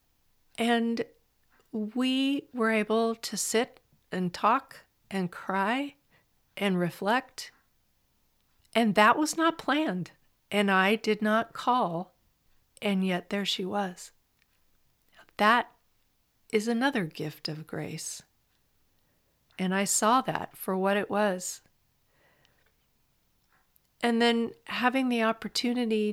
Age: 50-69